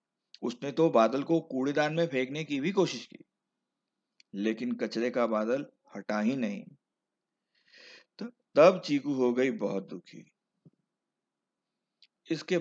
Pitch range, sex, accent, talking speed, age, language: 110-170 Hz, male, Indian, 120 wpm, 50-69, English